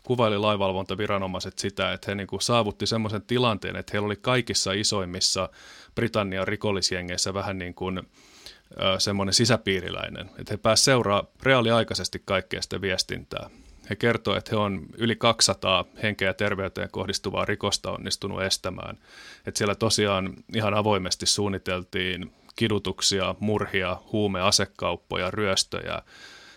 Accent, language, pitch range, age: native, Finnish, 95-105 Hz, 30-49